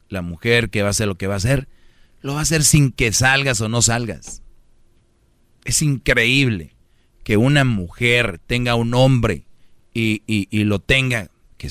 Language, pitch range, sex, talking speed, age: Spanish, 115-135 Hz, male, 180 wpm, 40-59